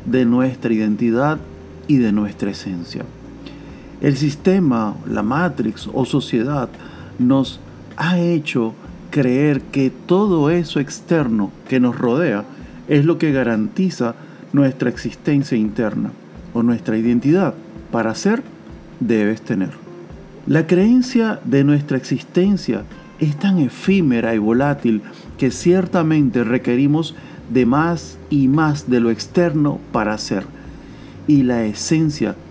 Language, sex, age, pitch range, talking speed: Spanish, male, 40-59, 110-150 Hz, 115 wpm